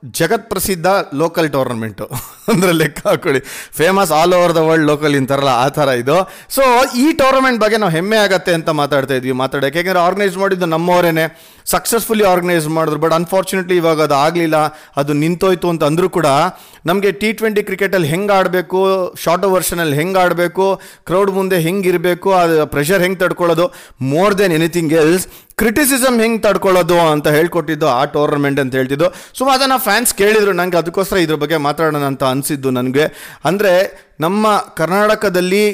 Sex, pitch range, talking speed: male, 155-195 Hz, 150 wpm